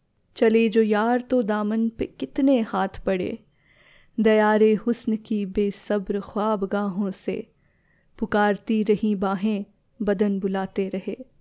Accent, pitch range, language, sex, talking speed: native, 205-225 Hz, Hindi, female, 110 wpm